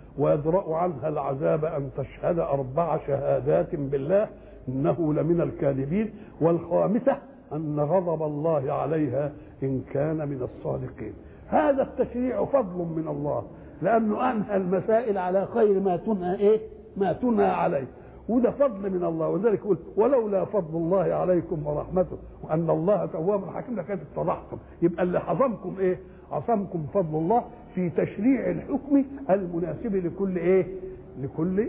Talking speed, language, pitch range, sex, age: 120 wpm, English, 155-195 Hz, male, 60-79